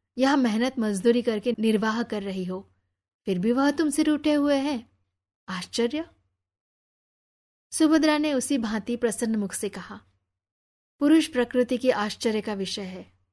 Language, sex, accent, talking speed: Hindi, female, native, 140 wpm